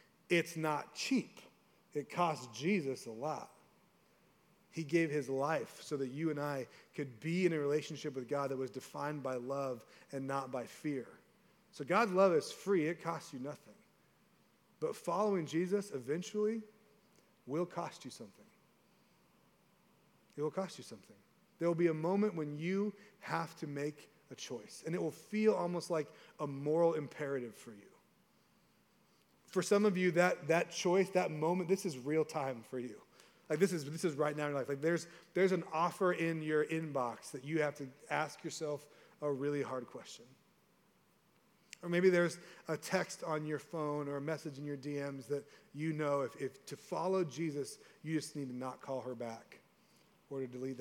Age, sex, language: 30-49, male, English